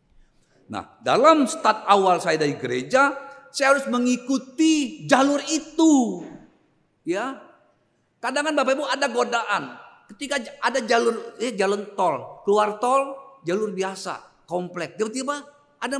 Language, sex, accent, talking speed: Indonesian, male, native, 120 wpm